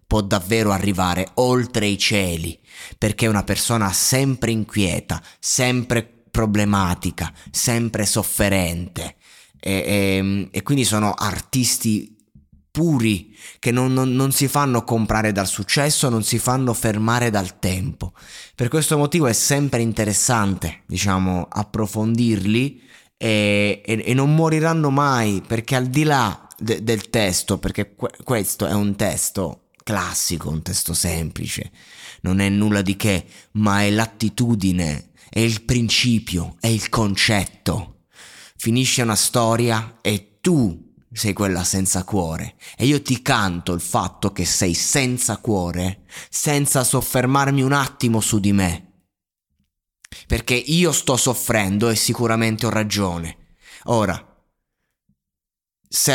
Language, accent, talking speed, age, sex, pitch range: Italian, native, 125 wpm, 20-39, male, 95-125 Hz